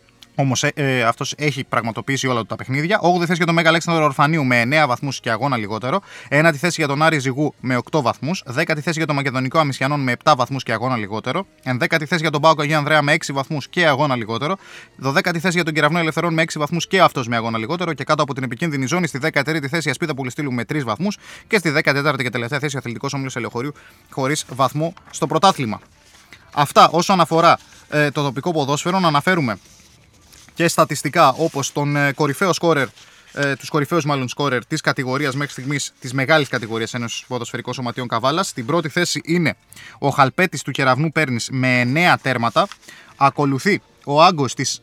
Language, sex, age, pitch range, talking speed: Greek, male, 20-39, 130-160 Hz, 160 wpm